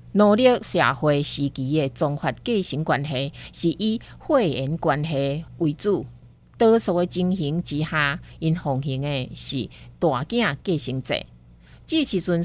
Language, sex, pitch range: Chinese, female, 145-210 Hz